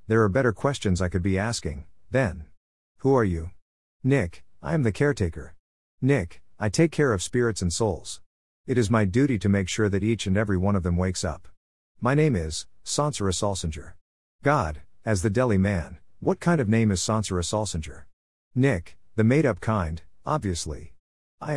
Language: English